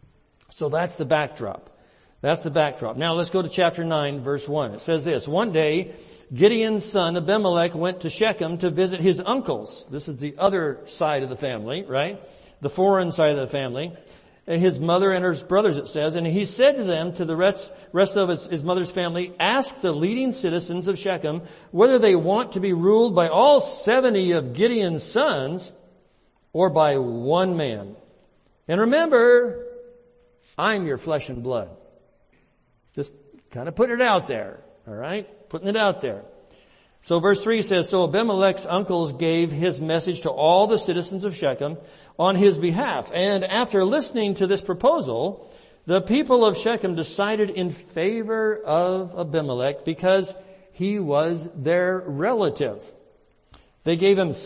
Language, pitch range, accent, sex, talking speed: English, 160-200 Hz, American, male, 165 wpm